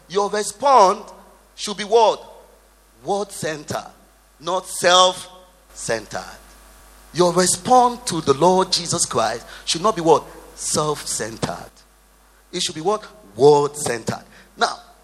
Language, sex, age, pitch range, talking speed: English, male, 30-49, 155-210 Hz, 105 wpm